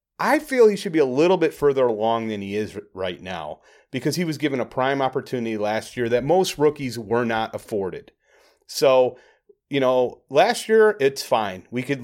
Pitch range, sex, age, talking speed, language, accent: 110-145 Hz, male, 30-49, 195 wpm, English, American